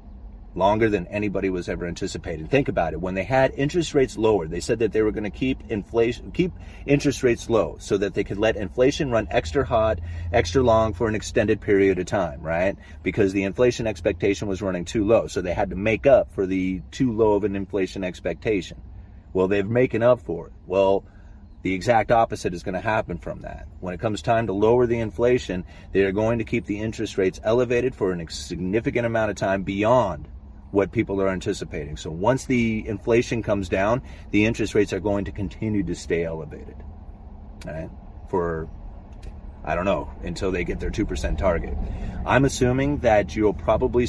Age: 30-49